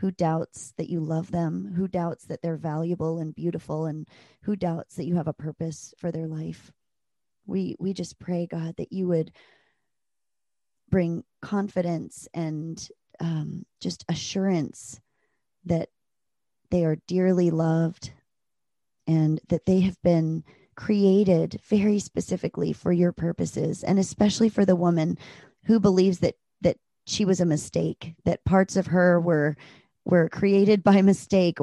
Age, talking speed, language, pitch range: 30-49, 145 wpm, English, 160-190 Hz